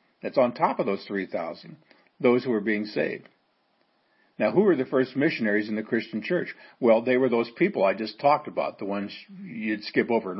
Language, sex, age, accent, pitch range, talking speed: English, male, 50-69, American, 110-130 Hz, 210 wpm